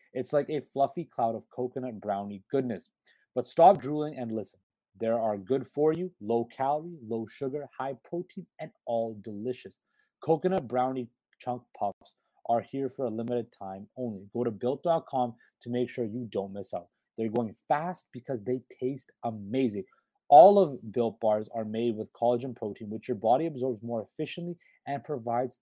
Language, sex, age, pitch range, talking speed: English, male, 30-49, 115-145 Hz, 165 wpm